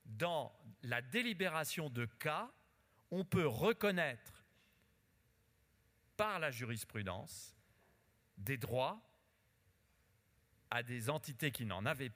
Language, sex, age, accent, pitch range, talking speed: French, male, 40-59, French, 100-145 Hz, 95 wpm